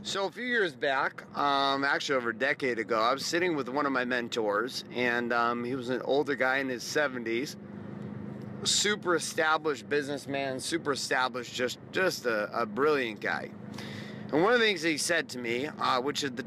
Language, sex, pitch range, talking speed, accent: English, male, 120-150 Hz, 195 wpm, American